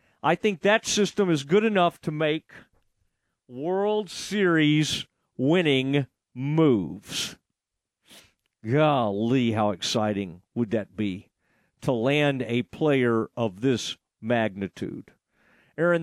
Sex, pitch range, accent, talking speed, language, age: male, 130-165 Hz, American, 100 wpm, English, 50-69